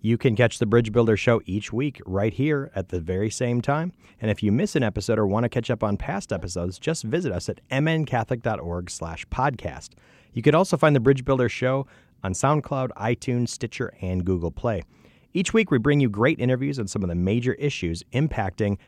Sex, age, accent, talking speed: male, 30-49, American, 210 wpm